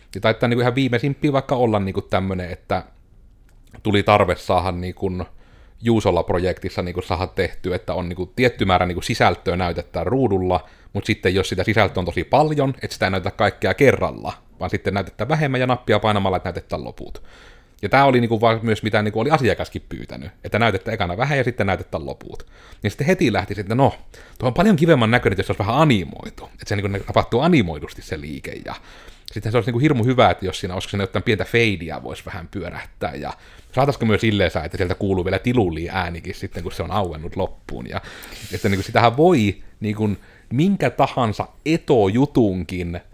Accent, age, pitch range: native, 30-49, 90-120 Hz